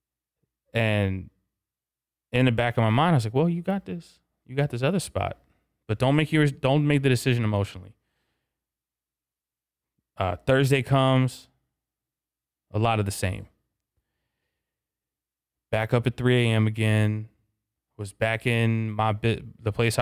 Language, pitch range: English, 100-120 Hz